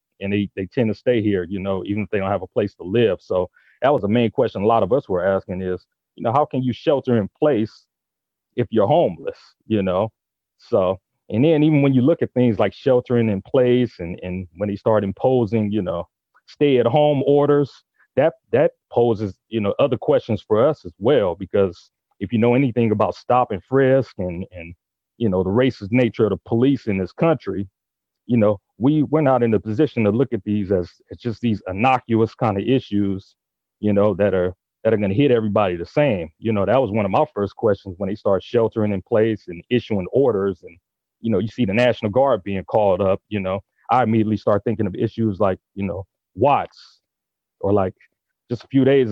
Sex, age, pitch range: male, 30-49, 100-125 Hz